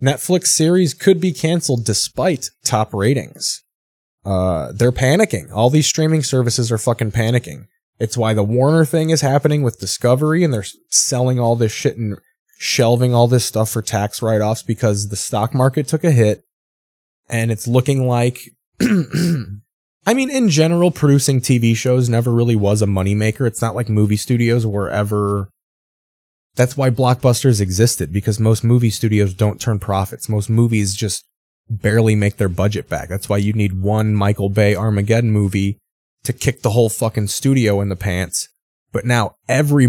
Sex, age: male, 20-39